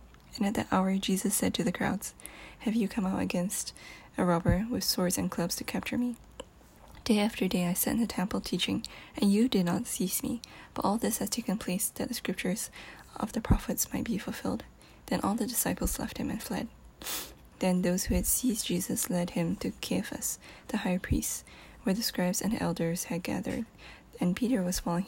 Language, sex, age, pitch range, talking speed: English, female, 10-29, 180-235 Hz, 205 wpm